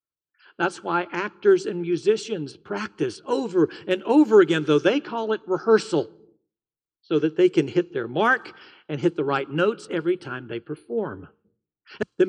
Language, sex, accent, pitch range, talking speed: English, male, American, 160-265 Hz, 155 wpm